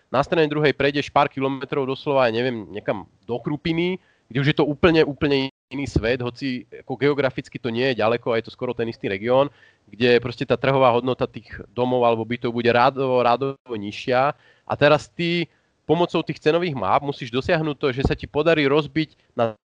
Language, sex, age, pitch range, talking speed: Slovak, male, 30-49, 130-155 Hz, 180 wpm